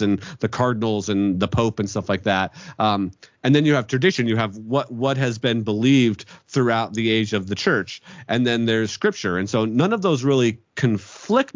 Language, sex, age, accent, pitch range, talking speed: English, male, 40-59, American, 100-125 Hz, 210 wpm